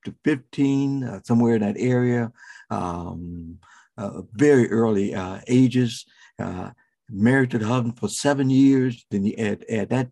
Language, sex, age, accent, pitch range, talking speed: English, male, 60-79, American, 110-140 Hz, 150 wpm